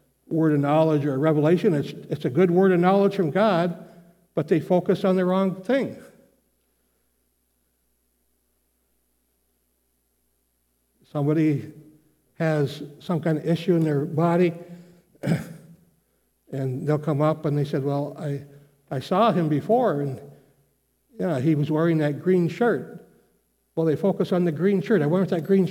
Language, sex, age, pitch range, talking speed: English, male, 60-79, 125-180 Hz, 145 wpm